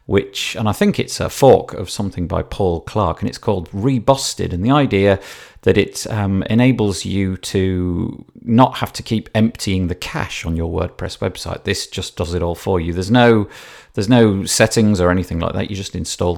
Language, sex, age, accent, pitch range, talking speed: English, male, 40-59, British, 85-110 Hz, 200 wpm